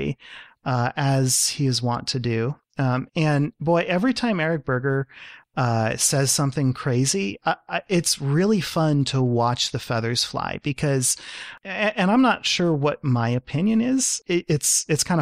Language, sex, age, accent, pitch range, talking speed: English, male, 30-49, American, 125-160 Hz, 150 wpm